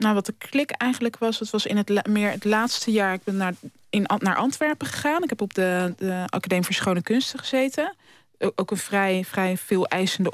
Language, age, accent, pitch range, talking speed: Dutch, 20-39, Dutch, 180-215 Hz, 220 wpm